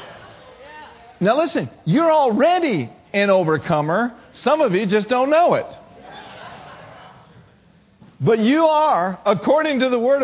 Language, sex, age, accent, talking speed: English, male, 50-69, American, 115 wpm